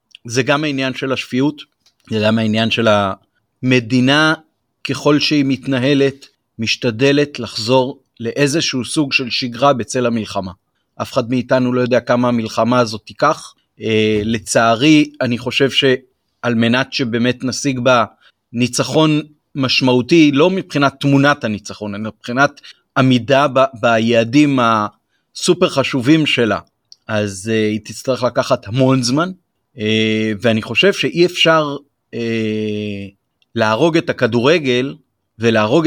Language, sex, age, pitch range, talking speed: Hebrew, male, 30-49, 115-145 Hz, 115 wpm